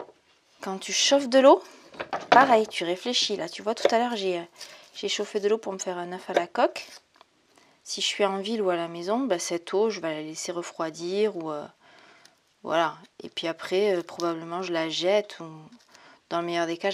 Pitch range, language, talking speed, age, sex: 180-230 Hz, French, 215 wpm, 20-39, female